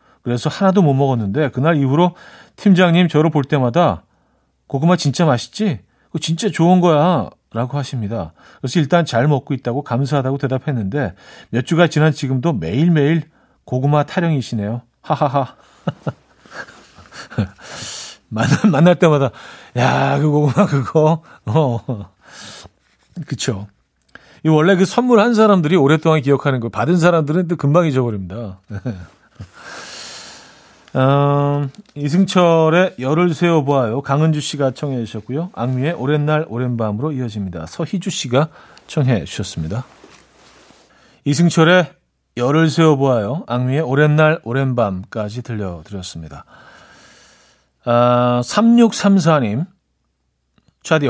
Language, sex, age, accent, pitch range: Korean, male, 40-59, native, 125-170 Hz